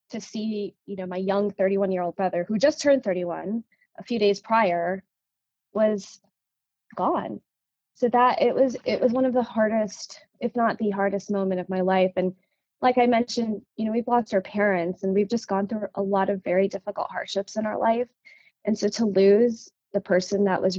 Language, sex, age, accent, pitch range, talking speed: English, female, 20-39, American, 190-235 Hz, 195 wpm